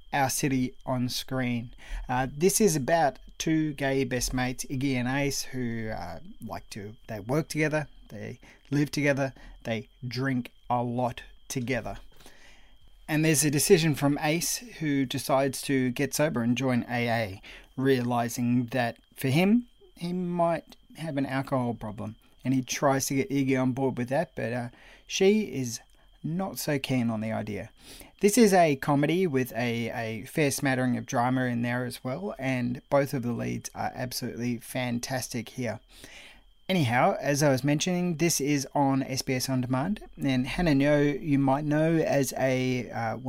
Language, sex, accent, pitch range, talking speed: English, male, Australian, 125-145 Hz, 165 wpm